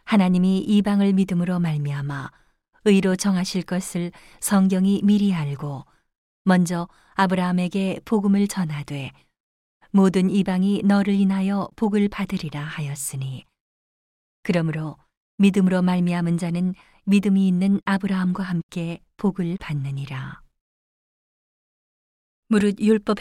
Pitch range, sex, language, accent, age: 165-200 Hz, female, Korean, native, 40-59